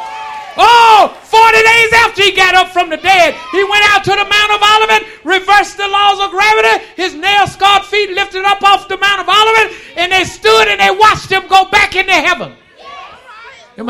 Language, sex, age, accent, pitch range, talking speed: English, male, 50-69, American, 265-405 Hz, 195 wpm